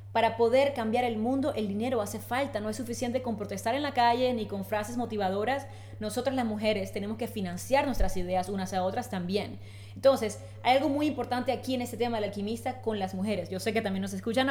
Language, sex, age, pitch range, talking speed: English, female, 20-39, 195-255 Hz, 220 wpm